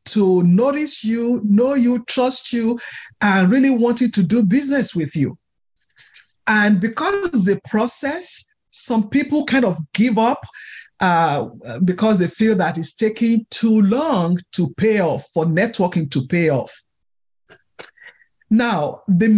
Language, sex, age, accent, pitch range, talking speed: English, male, 50-69, Nigerian, 190-275 Hz, 140 wpm